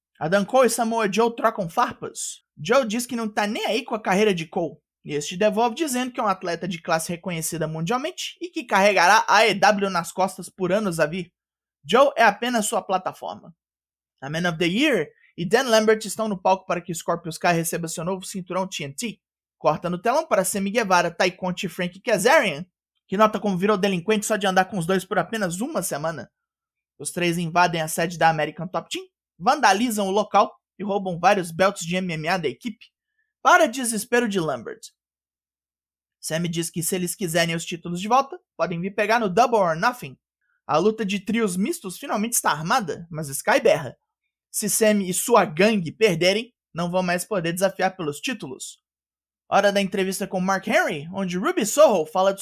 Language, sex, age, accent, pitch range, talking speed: Portuguese, male, 20-39, Brazilian, 175-220 Hz, 190 wpm